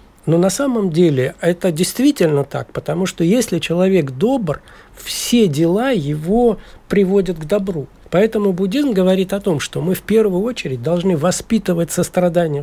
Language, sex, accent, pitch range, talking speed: Russian, male, native, 165-210 Hz, 145 wpm